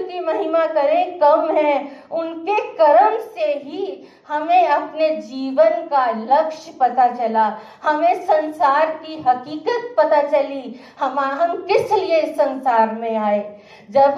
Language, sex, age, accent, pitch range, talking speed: Hindi, female, 50-69, native, 255-340 Hz, 120 wpm